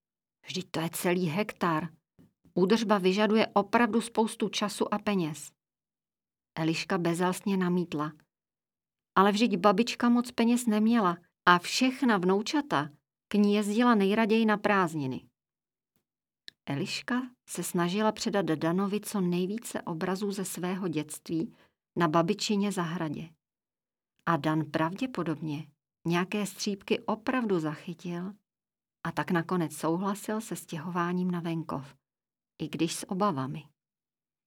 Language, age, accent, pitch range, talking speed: Czech, 40-59, native, 170-215 Hz, 110 wpm